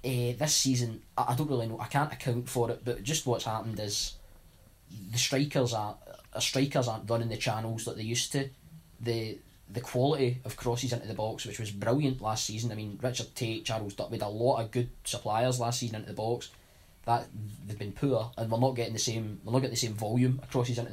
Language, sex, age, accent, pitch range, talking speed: English, male, 10-29, British, 110-125 Hz, 230 wpm